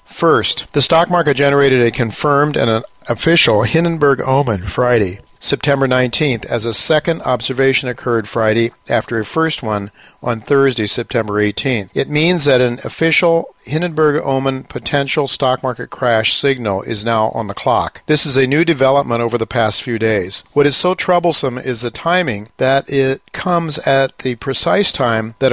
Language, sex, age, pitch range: English, male, 50-69, 115-140 Hz